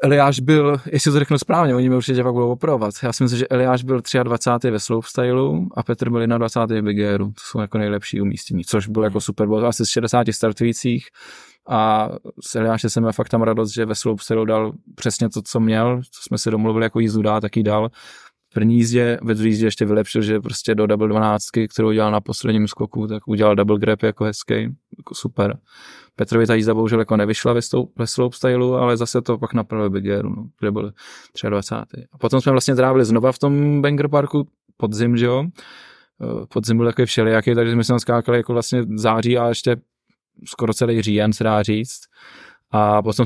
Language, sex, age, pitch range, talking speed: Czech, male, 20-39, 110-125 Hz, 200 wpm